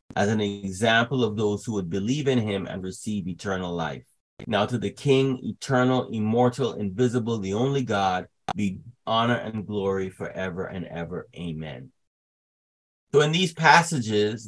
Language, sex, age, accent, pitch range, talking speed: English, male, 30-49, American, 100-130 Hz, 150 wpm